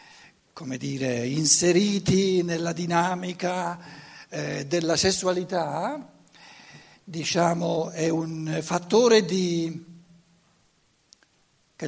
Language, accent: Italian, native